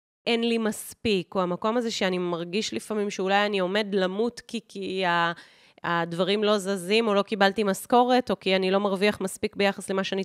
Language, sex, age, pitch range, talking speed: Hebrew, female, 30-49, 175-220 Hz, 180 wpm